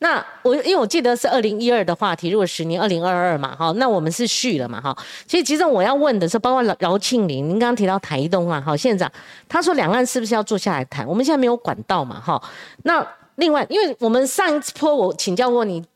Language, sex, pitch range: Chinese, female, 205-305 Hz